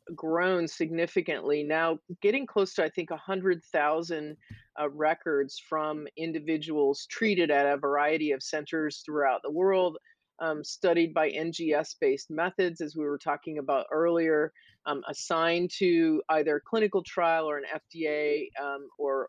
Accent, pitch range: American, 150-185 Hz